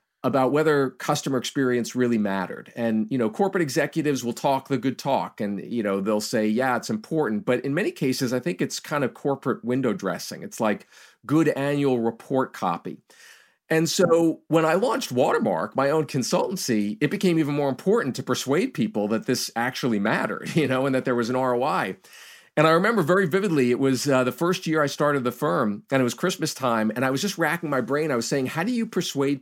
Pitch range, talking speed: 125-160 Hz, 215 wpm